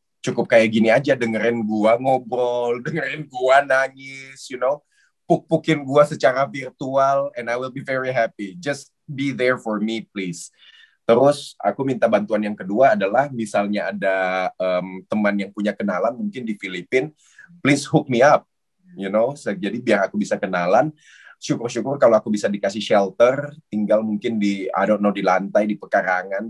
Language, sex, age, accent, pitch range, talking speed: Indonesian, male, 20-39, native, 95-130 Hz, 165 wpm